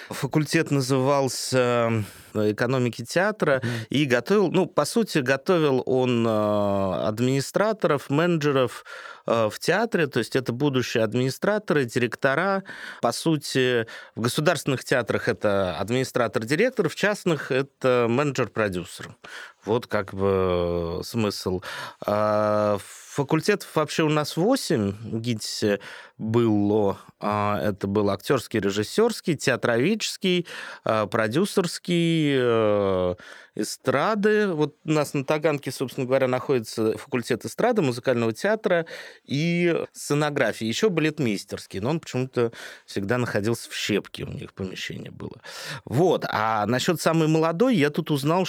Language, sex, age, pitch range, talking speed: Russian, male, 20-39, 110-160 Hz, 105 wpm